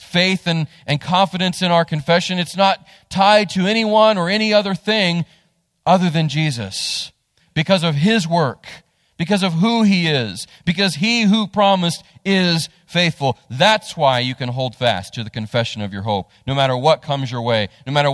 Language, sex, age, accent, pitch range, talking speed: English, male, 40-59, American, 115-175 Hz, 180 wpm